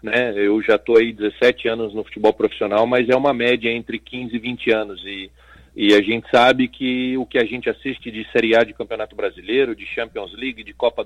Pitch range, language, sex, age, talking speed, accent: 115-130 Hz, Portuguese, male, 40-59, 225 wpm, Brazilian